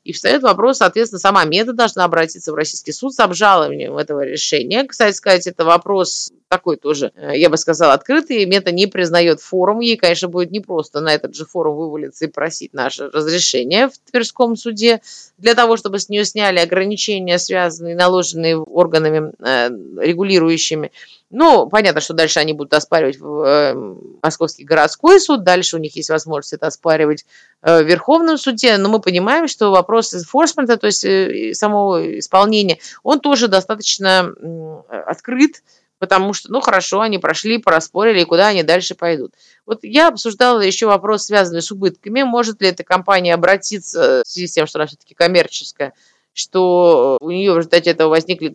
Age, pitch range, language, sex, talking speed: 20-39, 165-220 Hz, Russian, female, 160 wpm